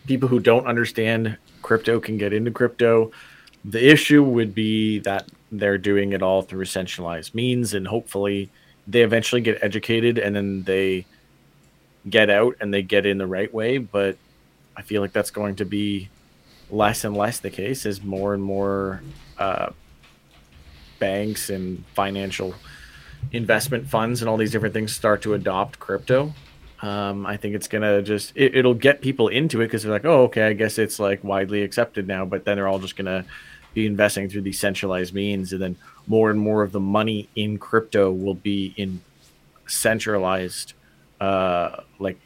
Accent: American